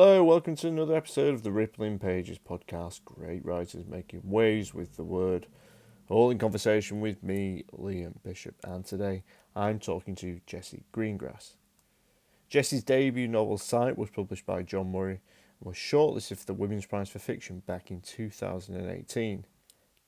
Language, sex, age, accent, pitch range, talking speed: English, male, 30-49, British, 95-115 Hz, 155 wpm